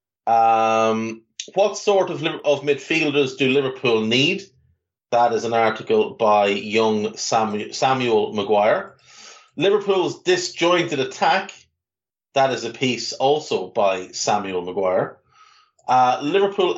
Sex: male